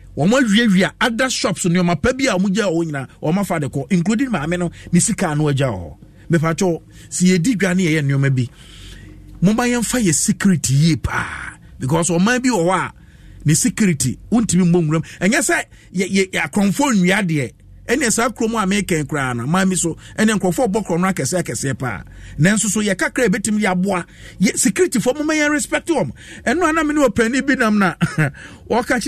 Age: 50-69